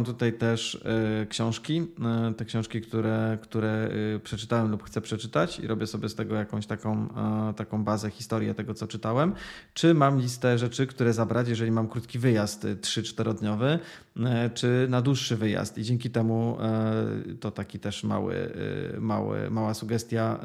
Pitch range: 110-125 Hz